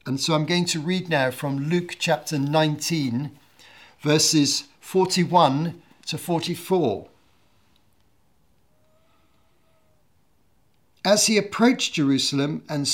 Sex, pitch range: male, 140-170 Hz